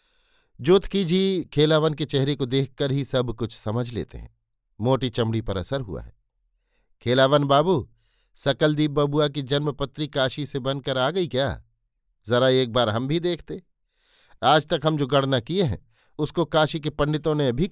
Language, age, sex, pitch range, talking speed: Hindi, 50-69, male, 120-155 Hz, 175 wpm